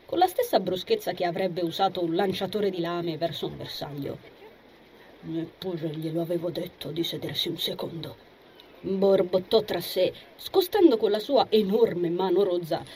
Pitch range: 175-260 Hz